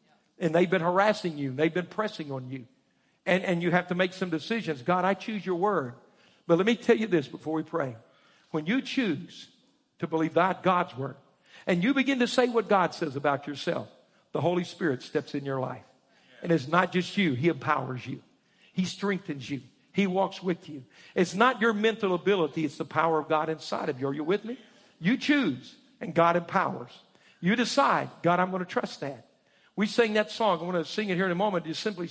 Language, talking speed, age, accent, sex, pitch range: English, 215 wpm, 50-69, American, male, 160-230 Hz